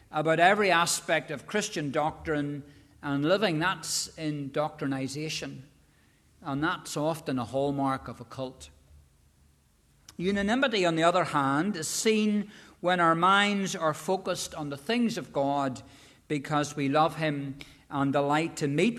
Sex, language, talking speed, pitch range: male, English, 140 wpm, 135-170 Hz